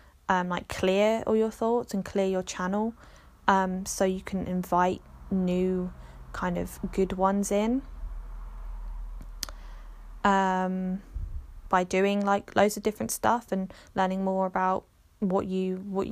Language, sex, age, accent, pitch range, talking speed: English, female, 10-29, British, 180-220 Hz, 135 wpm